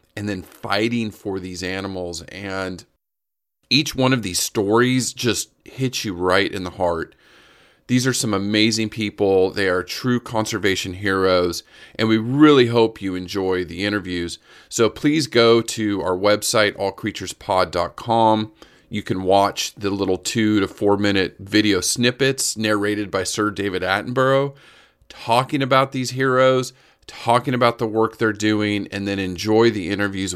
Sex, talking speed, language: male, 150 wpm, English